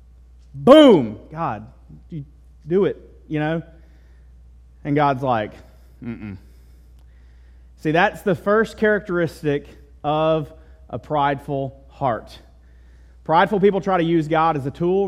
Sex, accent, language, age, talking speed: male, American, English, 30-49, 115 wpm